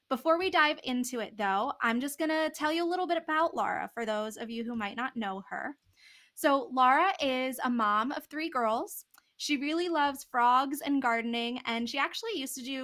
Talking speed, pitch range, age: 210 wpm, 225-290 Hz, 20-39